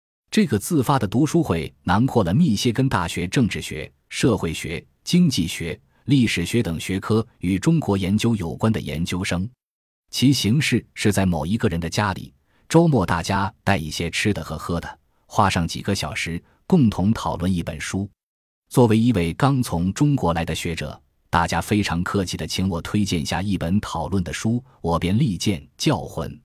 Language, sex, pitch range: Chinese, male, 85-110 Hz